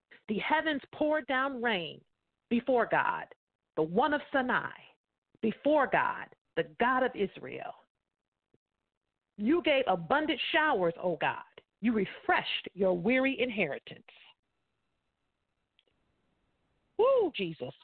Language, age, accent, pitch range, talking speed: English, 50-69, American, 195-285 Hz, 100 wpm